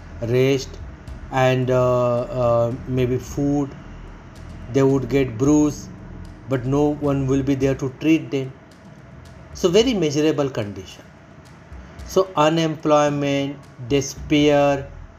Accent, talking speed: native, 105 wpm